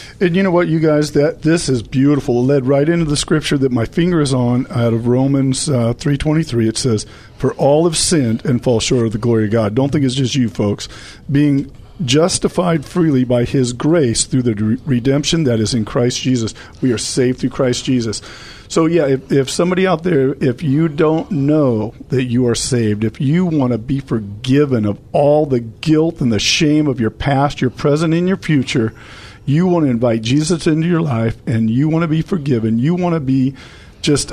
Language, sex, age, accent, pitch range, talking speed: English, male, 50-69, American, 115-150 Hz, 215 wpm